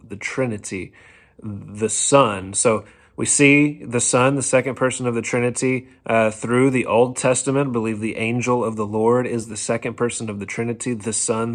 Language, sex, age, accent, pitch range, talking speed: English, male, 30-49, American, 105-120 Hz, 180 wpm